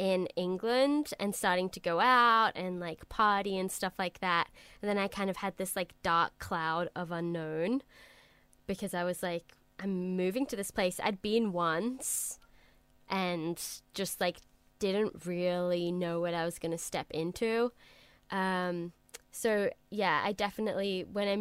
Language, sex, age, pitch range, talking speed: English, female, 10-29, 170-205 Hz, 165 wpm